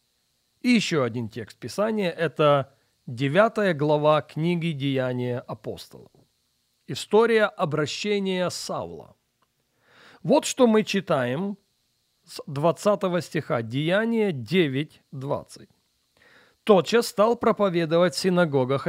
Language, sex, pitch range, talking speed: Russian, male, 140-190 Hz, 90 wpm